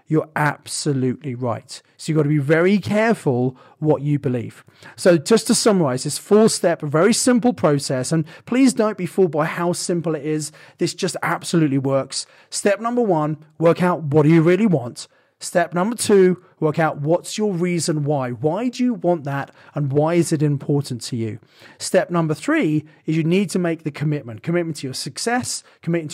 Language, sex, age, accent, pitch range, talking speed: English, male, 30-49, British, 150-185 Hz, 200 wpm